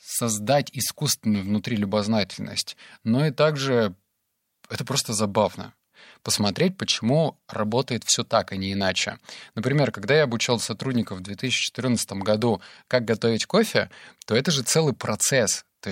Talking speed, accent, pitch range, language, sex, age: 130 wpm, native, 105-135 Hz, Russian, male, 20-39